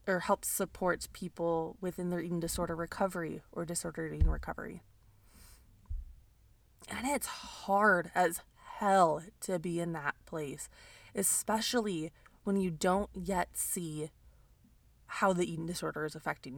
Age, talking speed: 20-39, 125 wpm